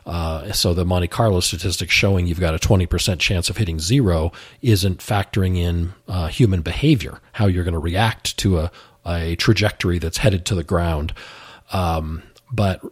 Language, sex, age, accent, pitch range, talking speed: English, male, 40-59, American, 85-100 Hz, 170 wpm